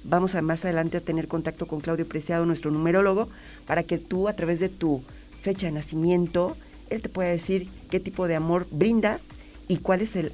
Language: Spanish